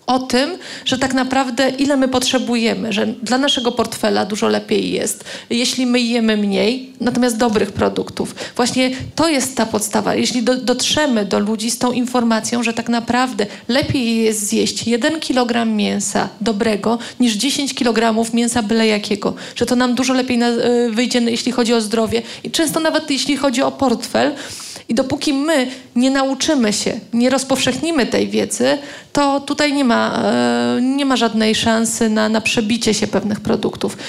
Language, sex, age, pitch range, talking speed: Polish, female, 30-49, 230-260 Hz, 165 wpm